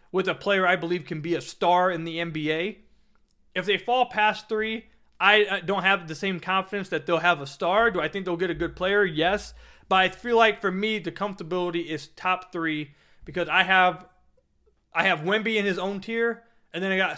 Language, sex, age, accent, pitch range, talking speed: English, male, 30-49, American, 165-195 Hz, 215 wpm